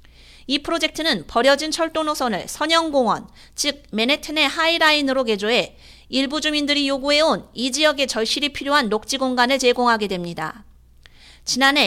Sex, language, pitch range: female, Korean, 230-300 Hz